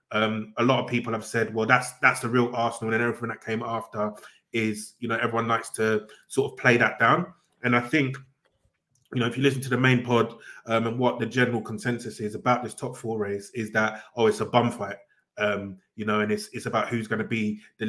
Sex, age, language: male, 20-39, English